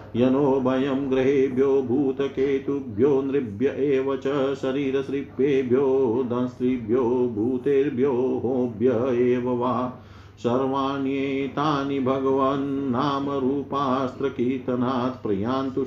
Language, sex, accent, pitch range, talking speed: Hindi, male, native, 125-135 Hz, 40 wpm